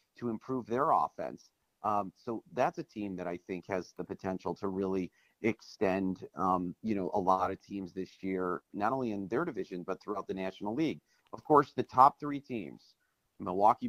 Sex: male